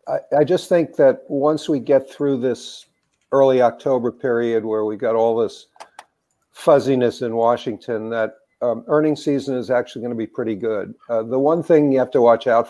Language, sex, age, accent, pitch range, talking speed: English, male, 50-69, American, 110-135 Hz, 190 wpm